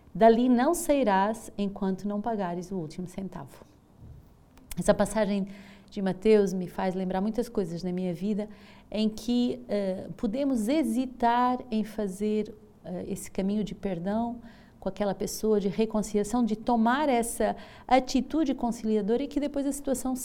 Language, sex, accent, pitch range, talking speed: Portuguese, female, Brazilian, 190-230 Hz, 140 wpm